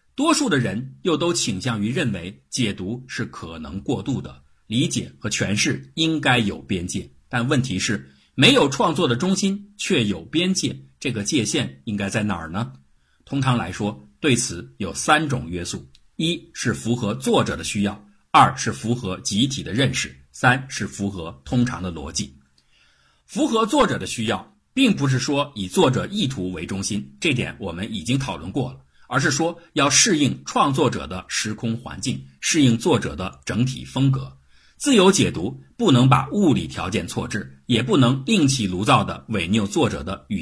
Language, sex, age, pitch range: Chinese, male, 50-69, 90-145 Hz